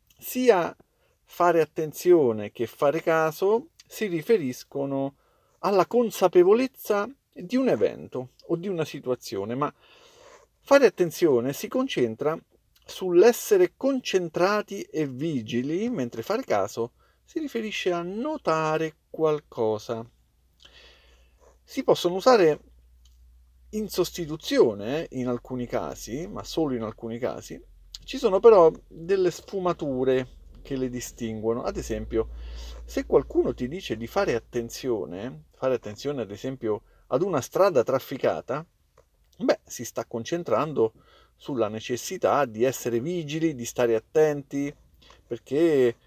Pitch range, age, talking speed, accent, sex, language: 115-180 Hz, 50-69, 110 wpm, native, male, Italian